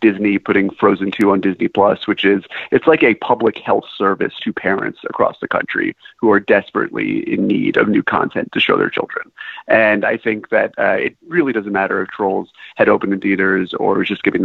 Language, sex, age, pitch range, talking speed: English, male, 30-49, 95-130 Hz, 210 wpm